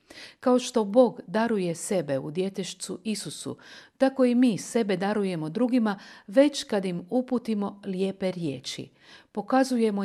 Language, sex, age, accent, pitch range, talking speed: Croatian, female, 50-69, native, 180-240 Hz, 125 wpm